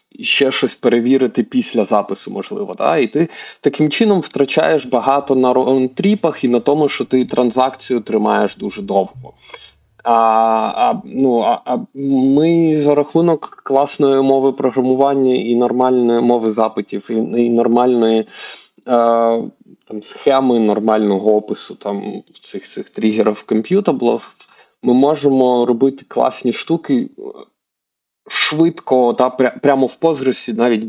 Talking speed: 120 wpm